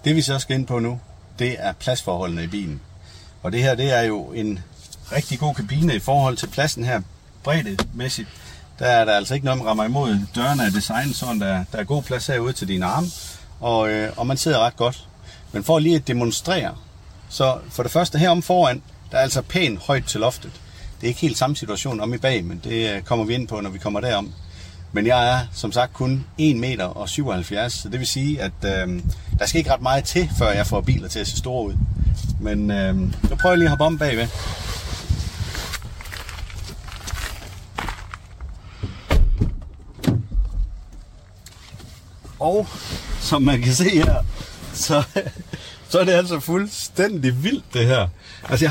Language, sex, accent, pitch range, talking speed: Danish, male, native, 95-135 Hz, 185 wpm